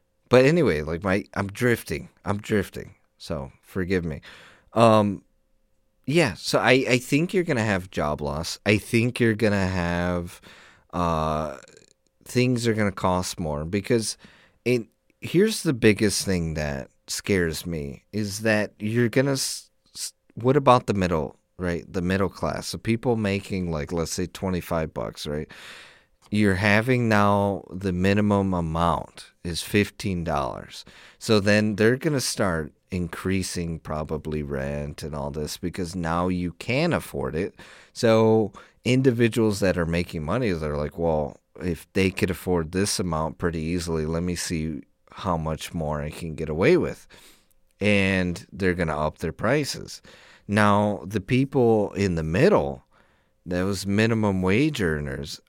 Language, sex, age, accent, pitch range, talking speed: English, male, 30-49, American, 85-110 Hz, 150 wpm